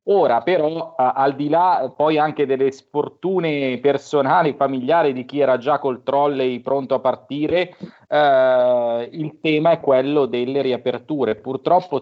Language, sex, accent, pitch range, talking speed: Italian, male, native, 130-155 Hz, 140 wpm